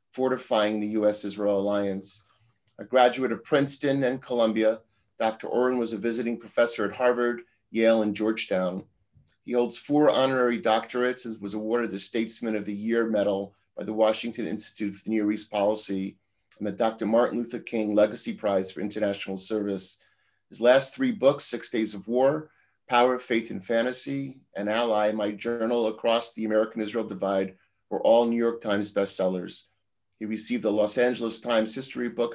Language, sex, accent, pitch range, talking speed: English, male, American, 105-120 Hz, 165 wpm